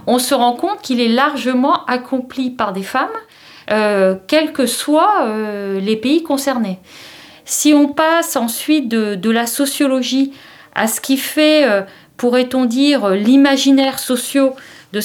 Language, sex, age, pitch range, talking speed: French, female, 40-59, 220-280 Hz, 145 wpm